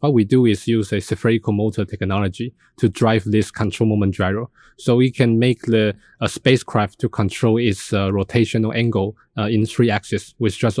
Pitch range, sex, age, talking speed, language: 105-120 Hz, male, 20-39, 190 wpm, English